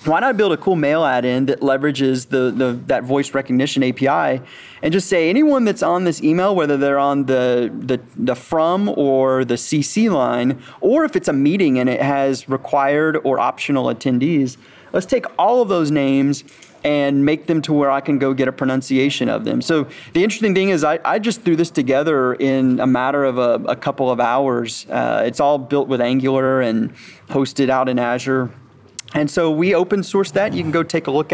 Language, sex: English, male